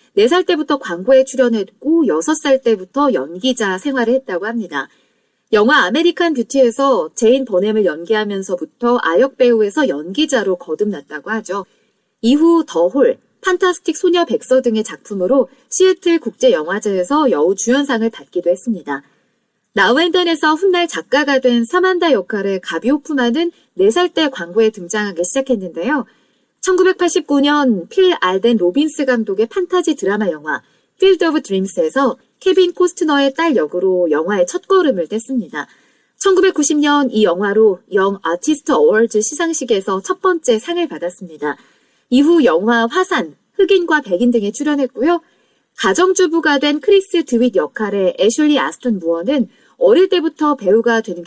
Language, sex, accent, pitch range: Korean, female, native, 210-330 Hz